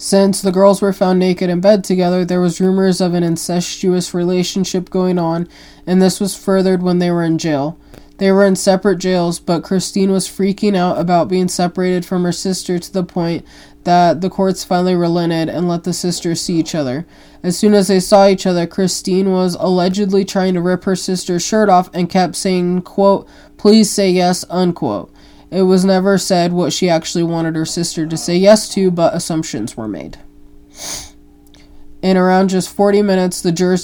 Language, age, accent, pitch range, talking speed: English, 20-39, American, 170-190 Hz, 190 wpm